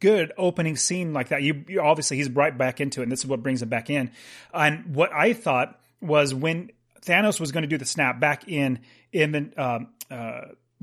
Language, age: English, 30-49